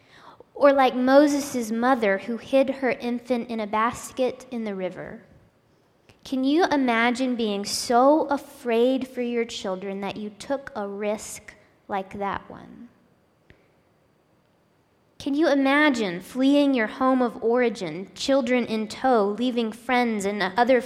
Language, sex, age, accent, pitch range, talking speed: English, female, 20-39, American, 210-255 Hz, 130 wpm